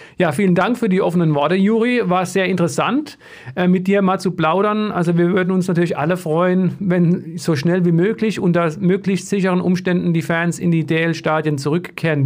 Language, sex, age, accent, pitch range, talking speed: German, male, 50-69, German, 170-200 Hz, 185 wpm